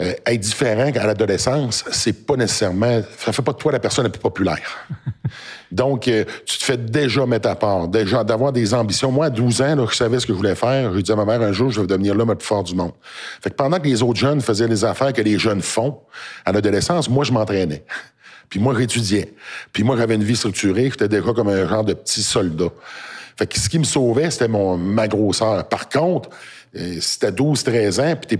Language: French